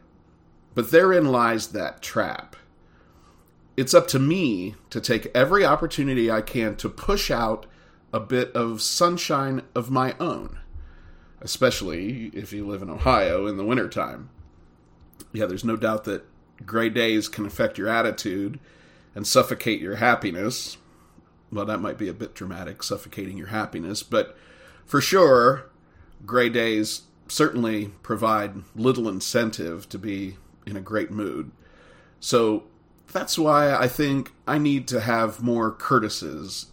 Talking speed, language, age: 140 wpm, English, 40-59